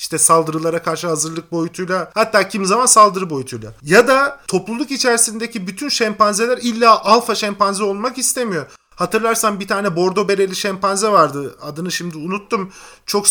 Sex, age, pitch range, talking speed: male, 50-69, 165-220 Hz, 145 wpm